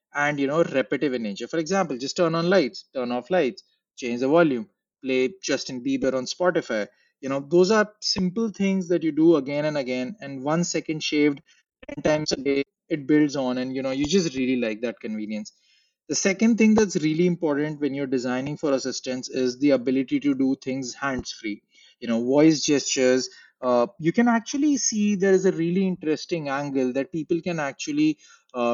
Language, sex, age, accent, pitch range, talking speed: English, male, 30-49, Indian, 130-175 Hz, 195 wpm